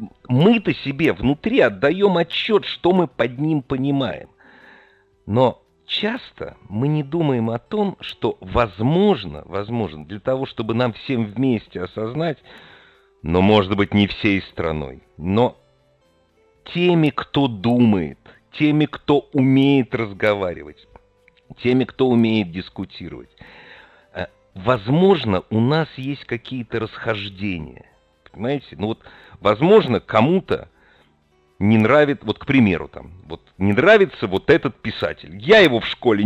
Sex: male